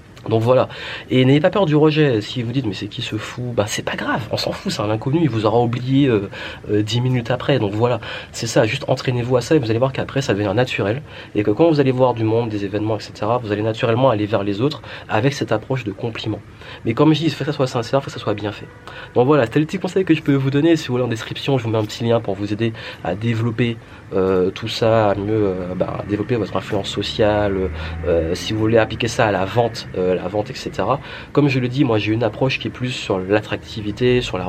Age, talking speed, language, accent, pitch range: 30-49, 270 wpm, French, French, 105-125 Hz